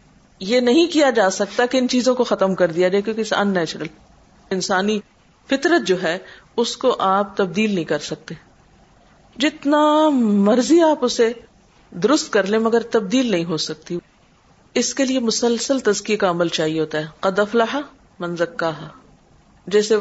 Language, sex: Urdu, female